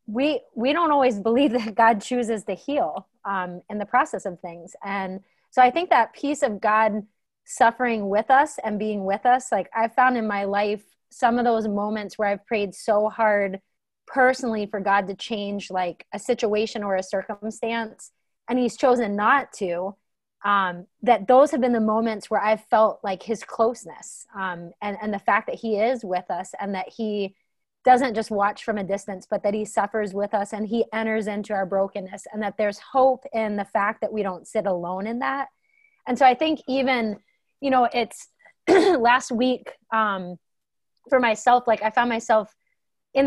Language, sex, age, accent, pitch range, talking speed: English, female, 30-49, American, 205-245 Hz, 190 wpm